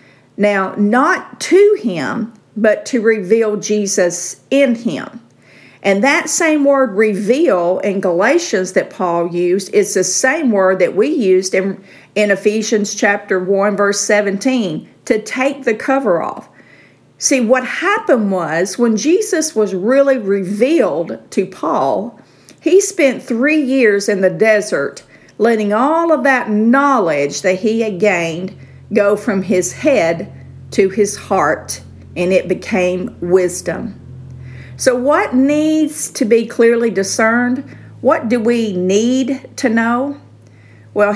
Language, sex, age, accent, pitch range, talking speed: English, female, 50-69, American, 190-255 Hz, 135 wpm